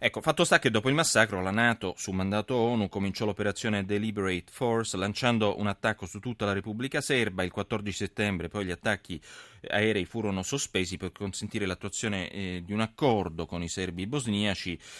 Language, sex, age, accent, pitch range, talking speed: Italian, male, 30-49, native, 90-110 Hz, 170 wpm